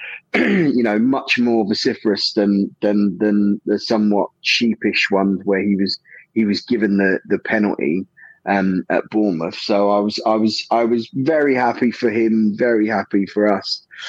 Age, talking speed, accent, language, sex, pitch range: 20-39, 165 wpm, British, English, male, 100-125 Hz